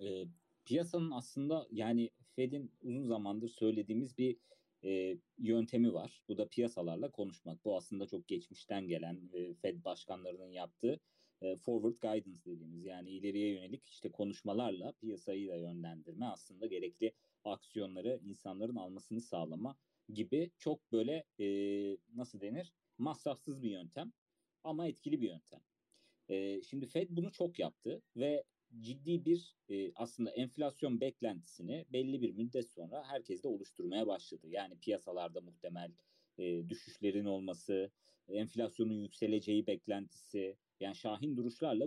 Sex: male